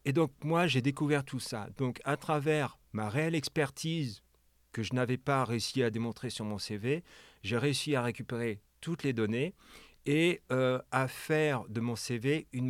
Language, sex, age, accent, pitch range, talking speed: French, male, 40-59, French, 105-140 Hz, 180 wpm